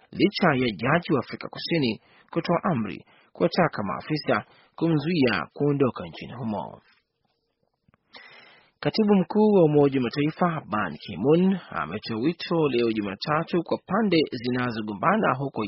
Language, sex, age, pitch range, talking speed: Swahili, male, 30-49, 125-160 Hz, 120 wpm